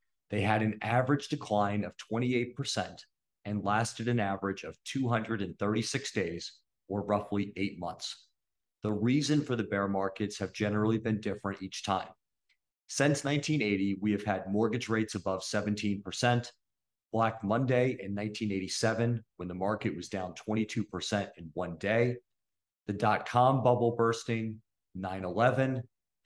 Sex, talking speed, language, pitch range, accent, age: male, 130 wpm, English, 100-120 Hz, American, 40-59